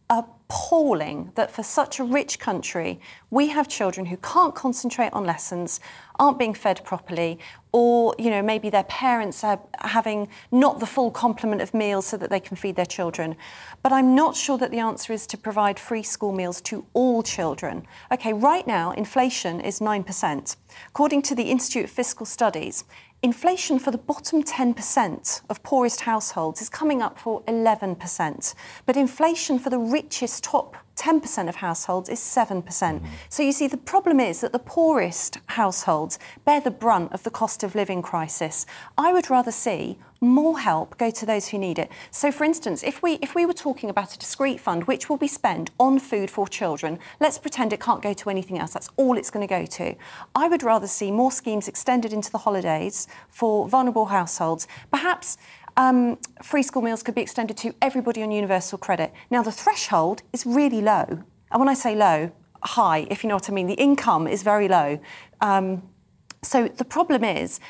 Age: 40-59